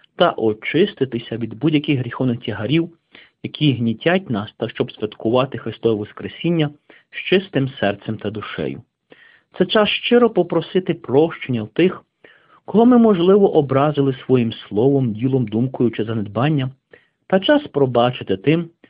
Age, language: 50-69, Ukrainian